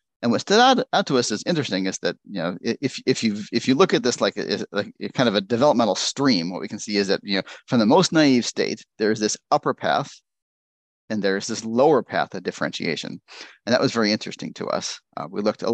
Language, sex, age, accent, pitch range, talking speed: English, male, 40-59, American, 95-120 Hz, 255 wpm